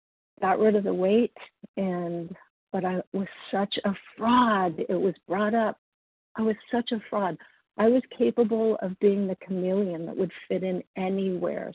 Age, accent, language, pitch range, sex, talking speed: 50-69, American, English, 175-210 Hz, female, 170 wpm